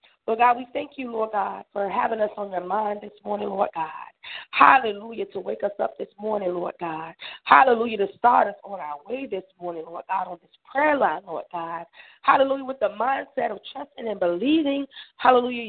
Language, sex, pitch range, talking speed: English, female, 190-250 Hz, 200 wpm